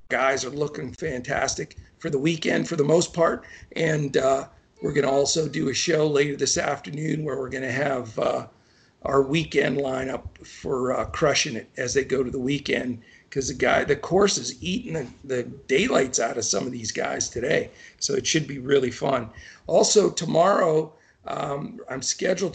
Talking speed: 185 wpm